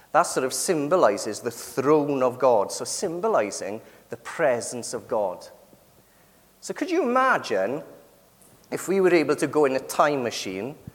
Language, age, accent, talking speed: English, 30-49, British, 155 wpm